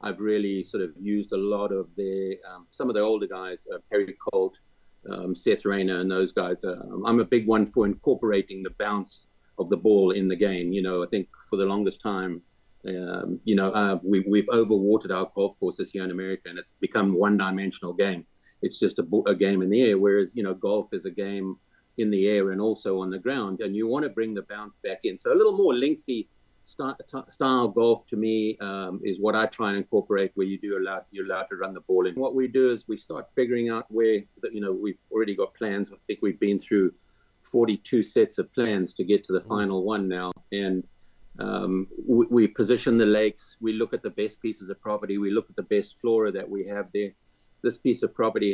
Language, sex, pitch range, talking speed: English, male, 95-110 Hz, 230 wpm